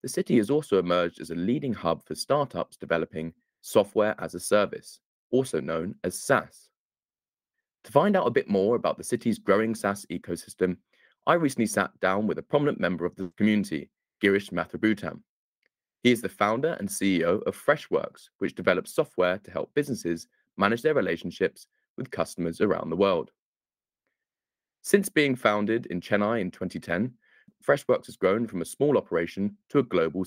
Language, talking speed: English, 165 wpm